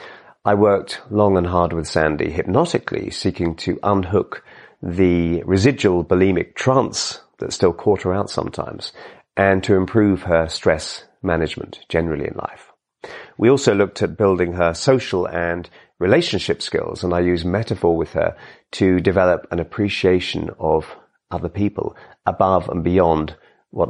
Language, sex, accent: English, male, British